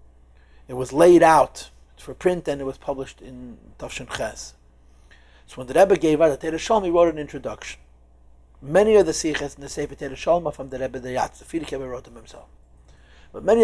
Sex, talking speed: male, 210 wpm